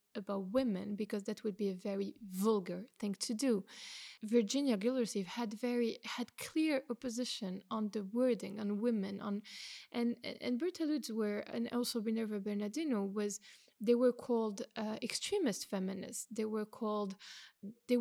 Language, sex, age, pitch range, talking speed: English, female, 20-39, 210-250 Hz, 150 wpm